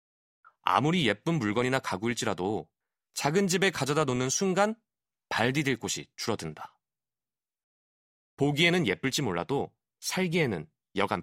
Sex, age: male, 30-49